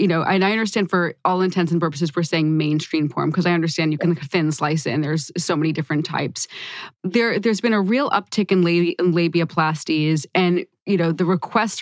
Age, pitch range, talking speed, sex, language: 20-39, 160-185 Hz, 210 wpm, female, English